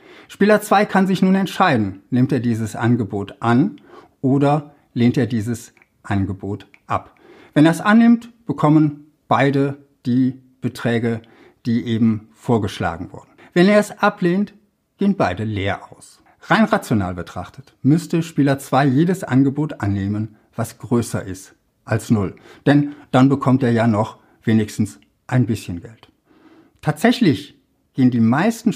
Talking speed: 135 wpm